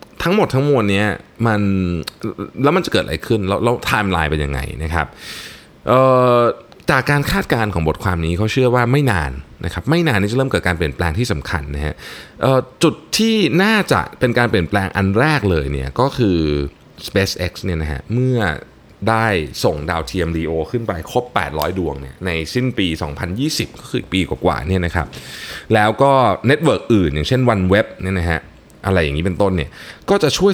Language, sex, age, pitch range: Thai, male, 20-39, 80-125 Hz